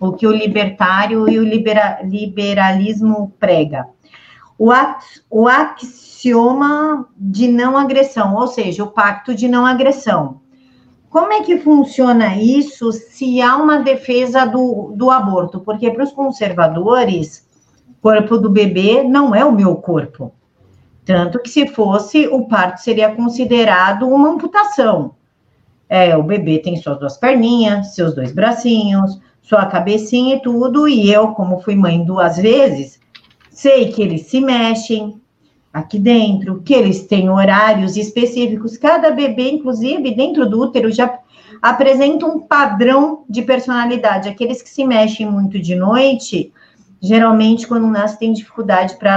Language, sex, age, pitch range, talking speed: Portuguese, female, 50-69, 200-255 Hz, 140 wpm